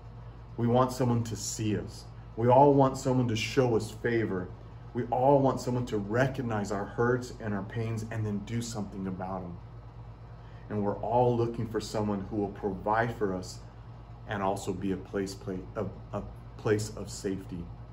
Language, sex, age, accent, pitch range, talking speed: English, male, 30-49, American, 105-120 Hz, 165 wpm